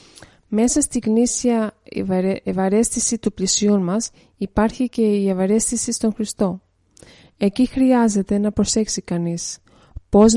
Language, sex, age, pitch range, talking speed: Greek, female, 20-39, 200-235 Hz, 110 wpm